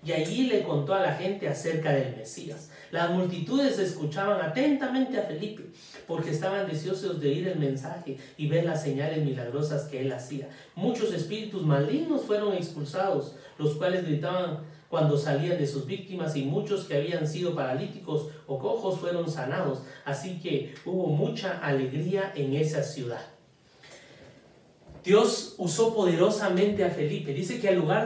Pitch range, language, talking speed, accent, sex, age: 150-205 Hz, Spanish, 150 wpm, Mexican, male, 40-59